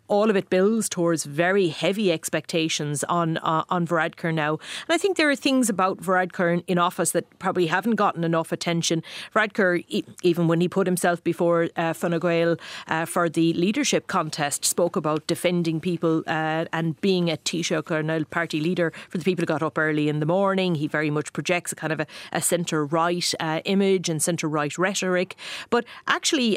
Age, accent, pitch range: 40-59, Irish, 160-185 Hz